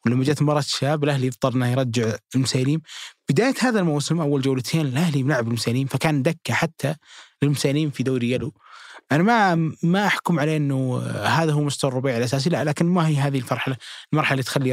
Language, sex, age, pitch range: Arabic, male, 20-39, 125-160 Hz